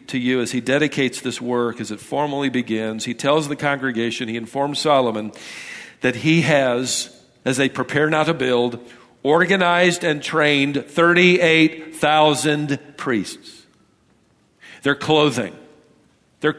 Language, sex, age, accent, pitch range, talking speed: English, male, 50-69, American, 150-235 Hz, 125 wpm